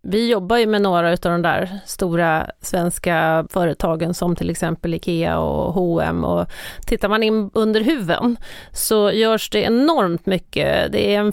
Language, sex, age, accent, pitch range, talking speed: English, female, 30-49, Swedish, 180-215 Hz, 165 wpm